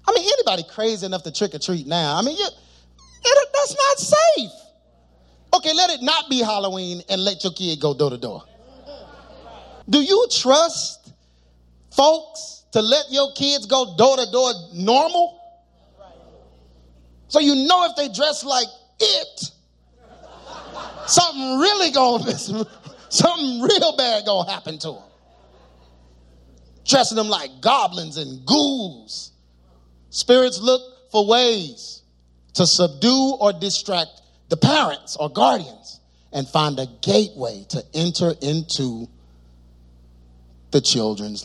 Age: 30-49